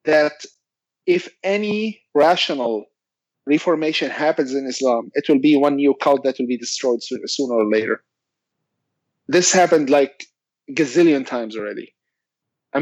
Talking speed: 135 wpm